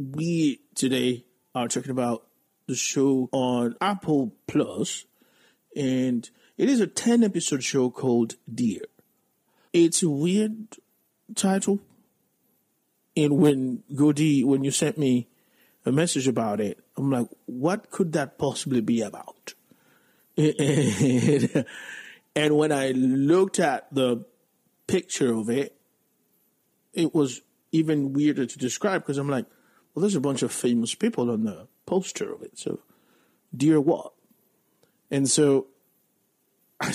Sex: male